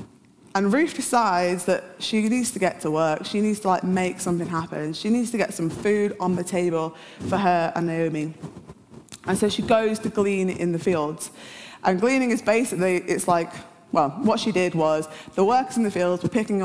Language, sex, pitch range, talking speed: English, female, 165-210 Hz, 205 wpm